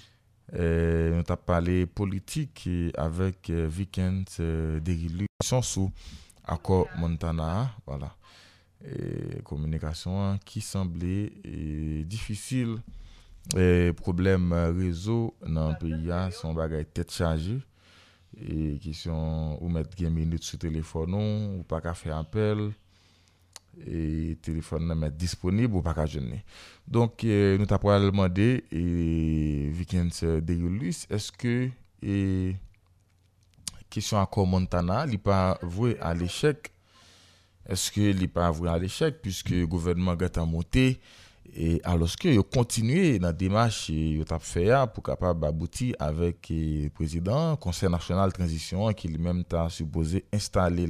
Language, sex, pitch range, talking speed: French, male, 80-100 Hz, 130 wpm